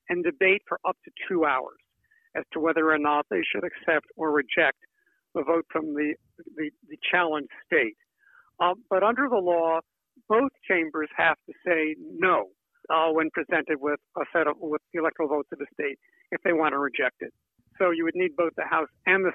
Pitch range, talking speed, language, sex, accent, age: 160-225 Hz, 200 wpm, English, male, American, 70-89